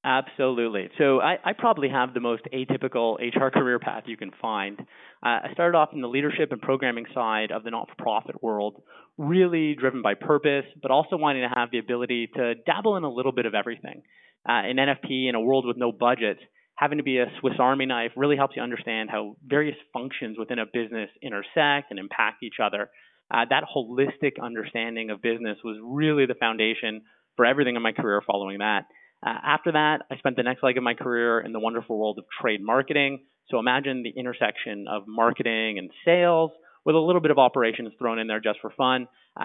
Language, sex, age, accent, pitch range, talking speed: English, male, 30-49, American, 115-145 Hz, 205 wpm